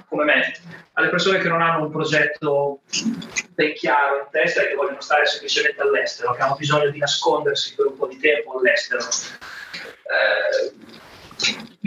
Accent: native